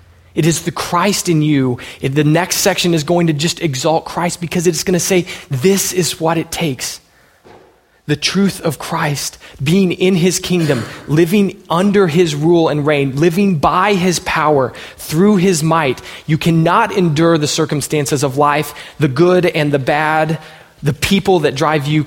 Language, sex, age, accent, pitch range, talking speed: English, male, 20-39, American, 155-185 Hz, 170 wpm